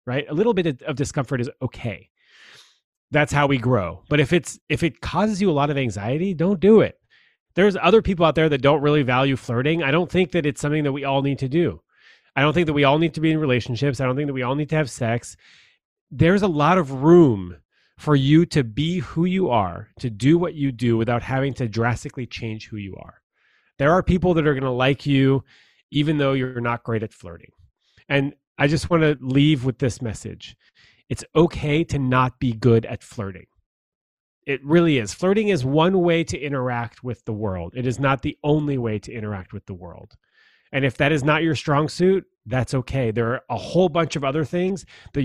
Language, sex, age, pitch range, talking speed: English, male, 30-49, 125-160 Hz, 225 wpm